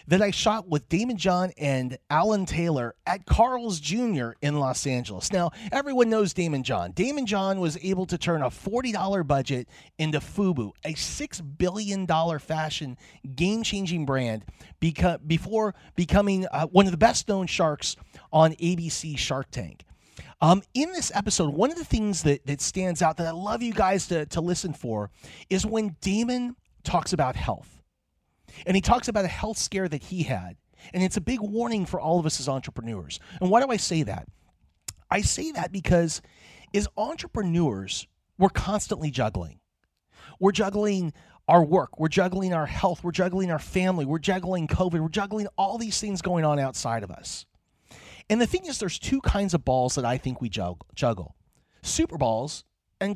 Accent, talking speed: American, 175 wpm